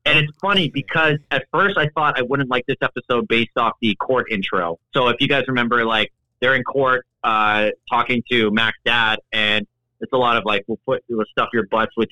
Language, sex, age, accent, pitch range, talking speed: English, male, 30-49, American, 115-140 Hz, 225 wpm